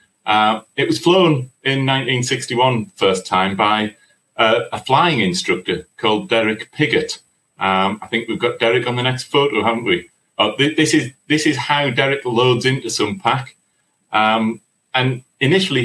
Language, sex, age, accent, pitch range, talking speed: English, male, 30-49, British, 115-145 Hz, 150 wpm